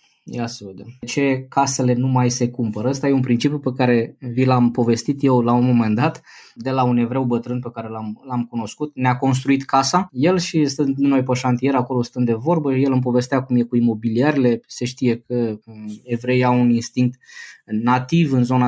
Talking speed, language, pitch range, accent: 195 wpm, Romanian, 120-150 Hz, native